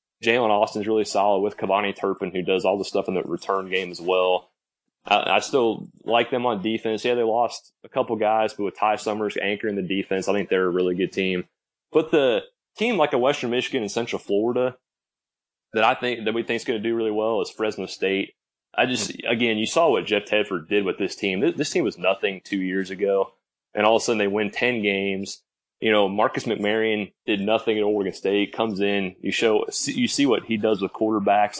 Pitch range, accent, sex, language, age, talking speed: 95-110 Hz, American, male, English, 30-49, 225 wpm